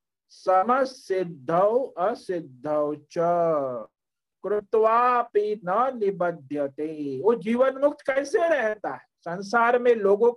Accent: native